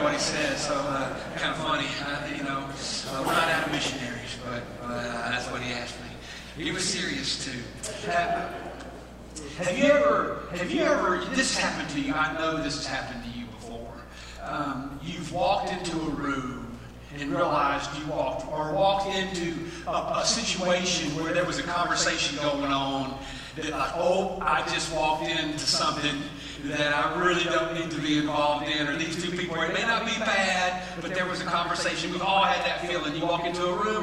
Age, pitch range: 40-59, 145-175 Hz